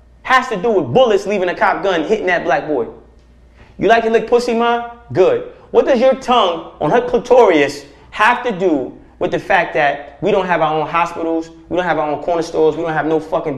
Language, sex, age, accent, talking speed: English, male, 30-49, American, 230 wpm